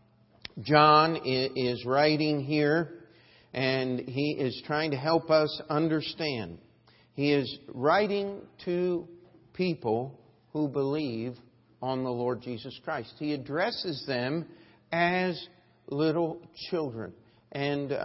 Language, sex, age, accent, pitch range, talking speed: English, male, 50-69, American, 125-155 Hz, 105 wpm